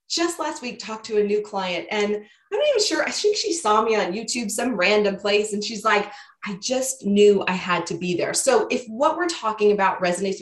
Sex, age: female, 20-39